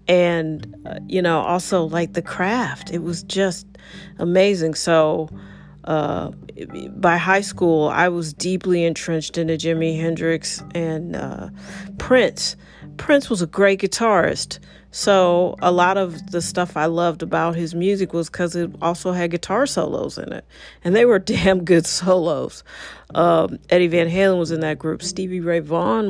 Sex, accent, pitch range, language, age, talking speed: female, American, 165-185 Hz, English, 40-59, 160 wpm